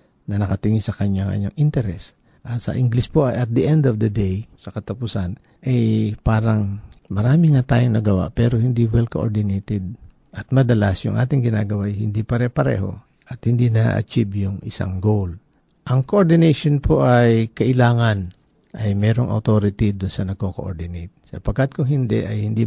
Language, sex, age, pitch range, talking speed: Filipino, male, 50-69, 100-130 Hz, 160 wpm